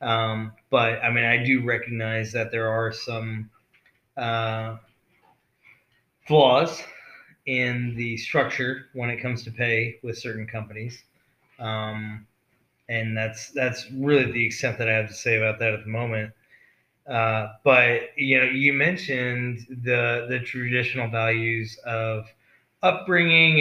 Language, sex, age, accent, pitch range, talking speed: English, male, 20-39, American, 115-130 Hz, 135 wpm